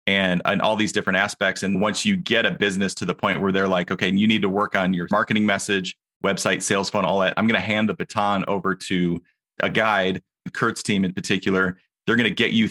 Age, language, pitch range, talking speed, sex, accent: 30-49, English, 95-105 Hz, 240 wpm, male, American